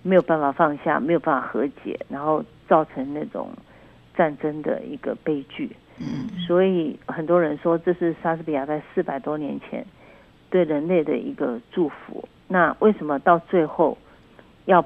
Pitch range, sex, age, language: 150-180 Hz, female, 50-69, Chinese